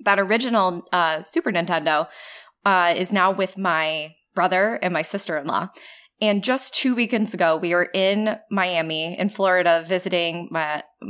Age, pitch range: 20-39, 170-225 Hz